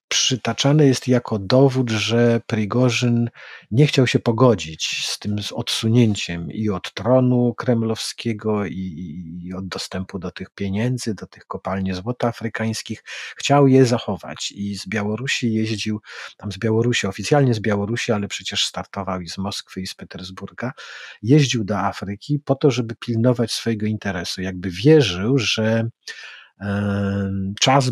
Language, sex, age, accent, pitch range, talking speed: Polish, male, 40-59, native, 95-120 Hz, 140 wpm